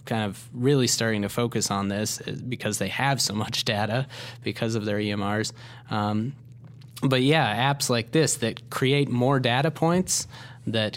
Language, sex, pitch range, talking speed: English, male, 110-125 Hz, 165 wpm